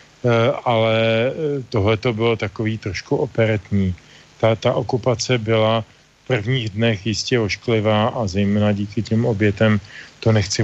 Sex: male